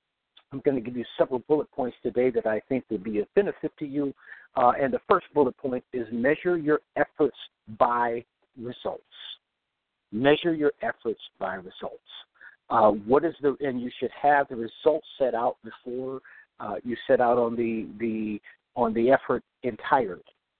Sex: male